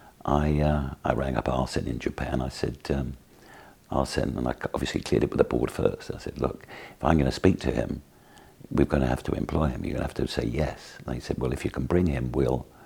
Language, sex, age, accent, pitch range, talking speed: English, male, 60-79, British, 65-75 Hz, 240 wpm